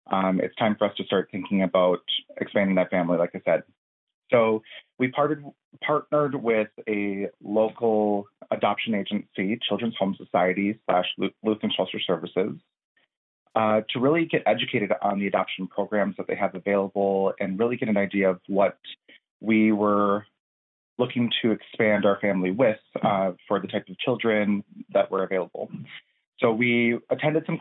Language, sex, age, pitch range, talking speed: English, male, 30-49, 100-125 Hz, 155 wpm